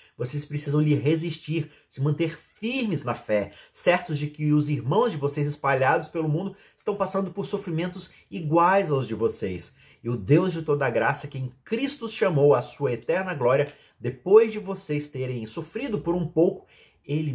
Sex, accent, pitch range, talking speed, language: male, Brazilian, 130-175 Hz, 175 wpm, Portuguese